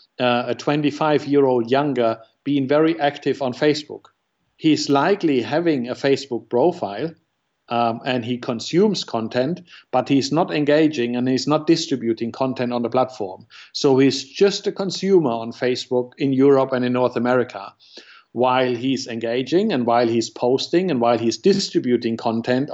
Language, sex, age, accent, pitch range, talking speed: English, male, 50-69, German, 125-150 Hz, 150 wpm